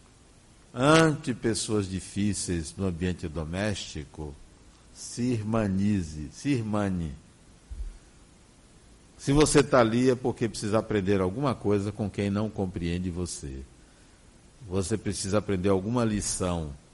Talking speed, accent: 105 wpm, Brazilian